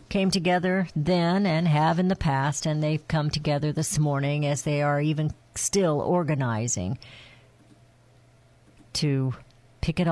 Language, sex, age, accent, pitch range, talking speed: English, female, 50-69, American, 130-175 Hz, 135 wpm